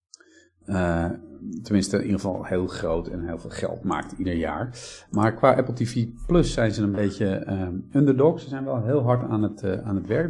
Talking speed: 210 wpm